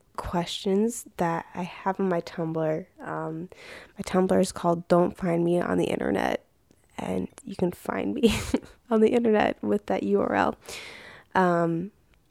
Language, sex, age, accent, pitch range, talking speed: English, female, 20-39, American, 165-200 Hz, 145 wpm